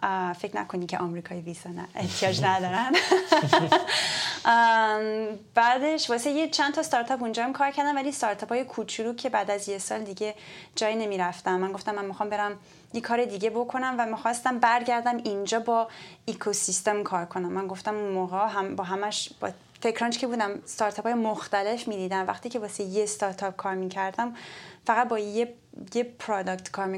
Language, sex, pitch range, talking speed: Persian, female, 190-235 Hz, 165 wpm